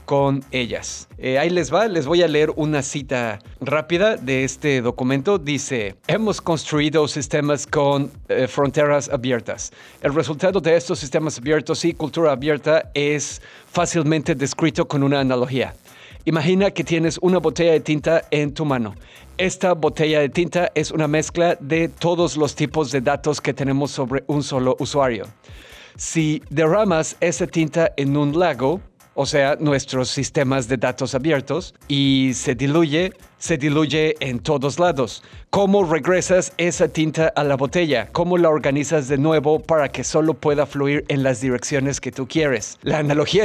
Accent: Mexican